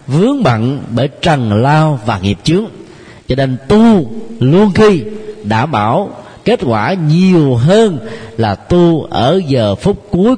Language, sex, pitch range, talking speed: Vietnamese, male, 115-160 Hz, 145 wpm